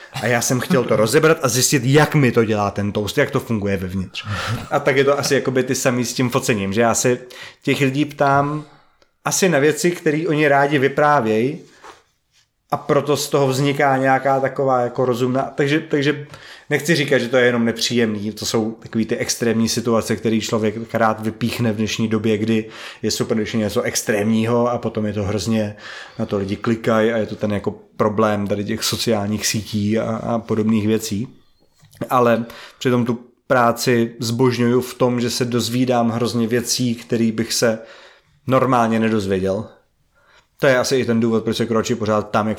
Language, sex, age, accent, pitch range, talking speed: Czech, male, 30-49, native, 110-125 Hz, 180 wpm